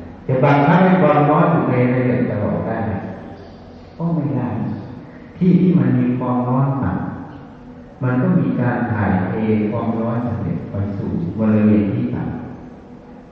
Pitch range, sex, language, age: 115-170 Hz, male, Thai, 60-79